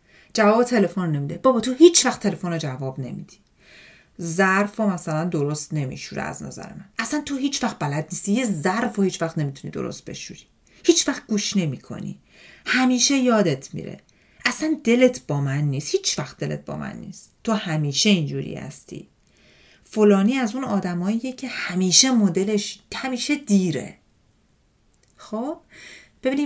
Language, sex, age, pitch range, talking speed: Persian, female, 40-59, 155-225 Hz, 150 wpm